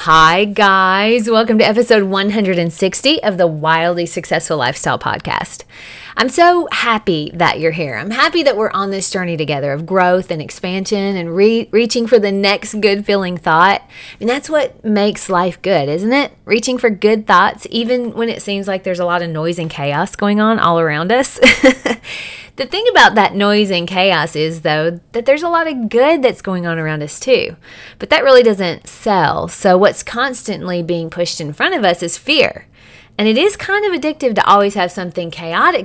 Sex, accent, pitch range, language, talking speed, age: female, American, 175-240 Hz, English, 190 wpm, 30-49